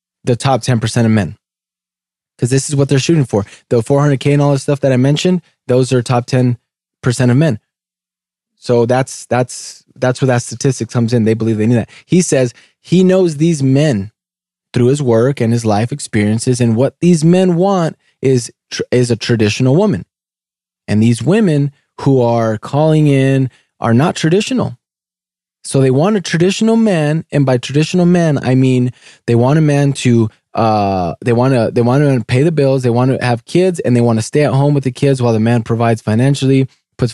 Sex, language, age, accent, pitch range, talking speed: male, English, 20-39, American, 120-155 Hz, 195 wpm